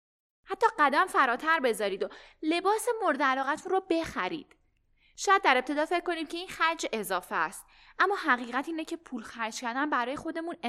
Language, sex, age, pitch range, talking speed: Persian, female, 10-29, 230-350 Hz, 165 wpm